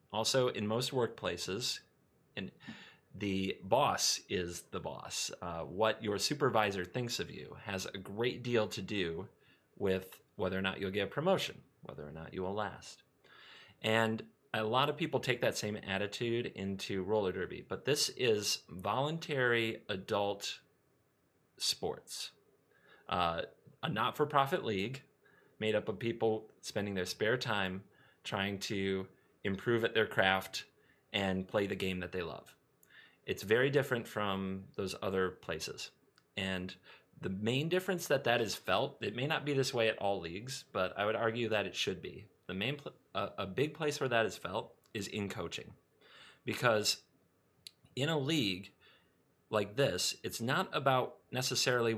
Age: 30-49